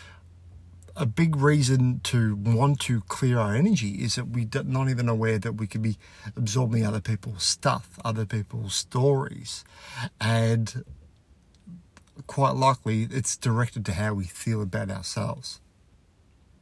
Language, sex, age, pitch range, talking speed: English, male, 50-69, 100-125 Hz, 135 wpm